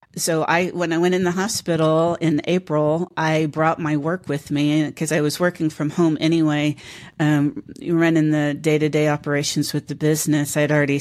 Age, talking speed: 50-69, 180 wpm